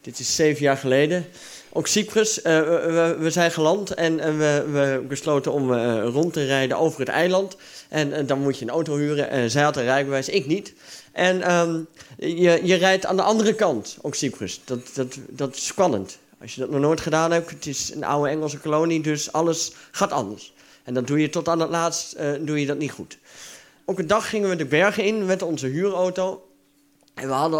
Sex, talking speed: male, 215 wpm